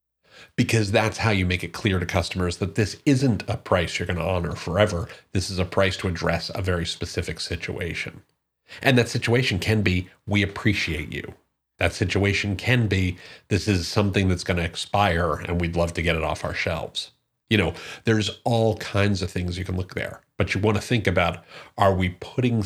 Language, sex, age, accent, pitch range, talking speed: English, male, 40-59, American, 85-105 Hz, 205 wpm